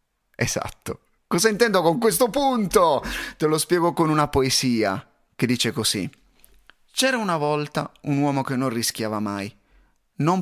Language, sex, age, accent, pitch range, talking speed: Italian, male, 30-49, native, 115-150 Hz, 145 wpm